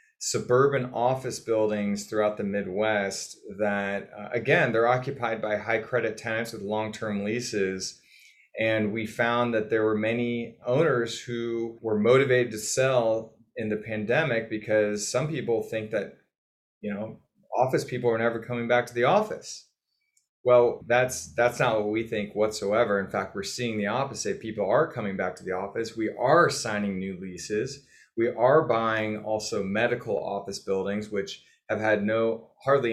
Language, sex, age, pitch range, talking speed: English, male, 30-49, 110-130 Hz, 160 wpm